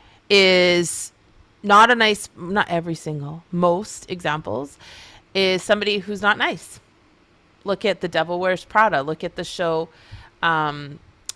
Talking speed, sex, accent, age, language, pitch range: 130 wpm, female, American, 30-49, English, 170-225 Hz